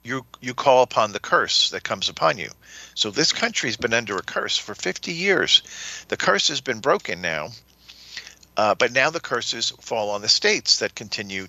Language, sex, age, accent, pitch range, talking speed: English, male, 50-69, American, 105-145 Hz, 200 wpm